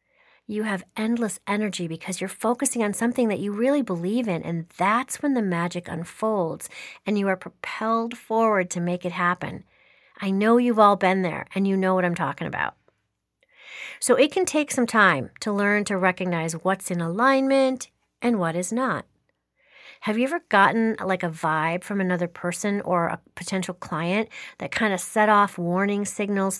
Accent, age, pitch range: American, 40-59, 180-230 Hz